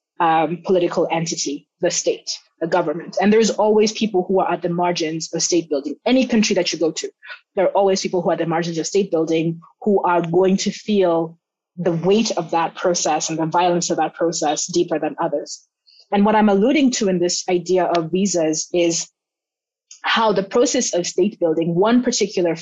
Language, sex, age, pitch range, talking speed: English, female, 20-39, 165-205 Hz, 200 wpm